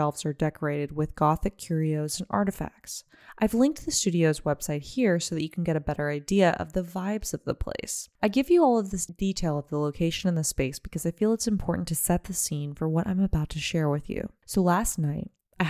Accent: American